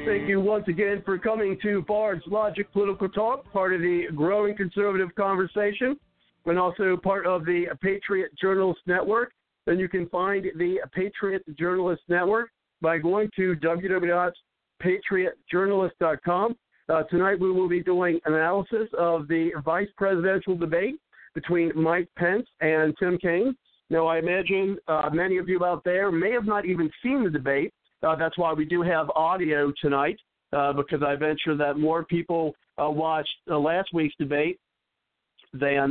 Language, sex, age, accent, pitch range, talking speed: English, male, 50-69, American, 155-190 Hz, 155 wpm